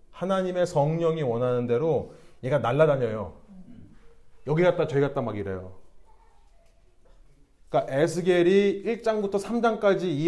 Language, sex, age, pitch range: Korean, male, 30-49, 120-180 Hz